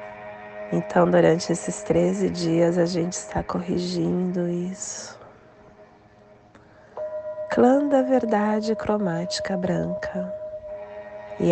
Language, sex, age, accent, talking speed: Portuguese, female, 20-39, Brazilian, 85 wpm